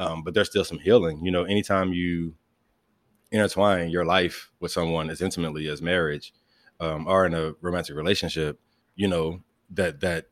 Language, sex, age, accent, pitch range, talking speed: English, male, 20-39, American, 80-95 Hz, 170 wpm